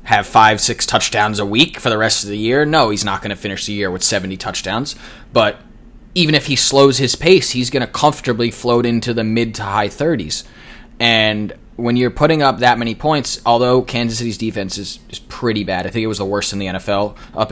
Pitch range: 105-125 Hz